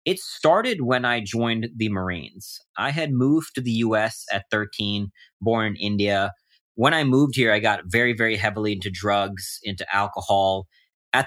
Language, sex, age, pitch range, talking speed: English, male, 30-49, 100-120 Hz, 170 wpm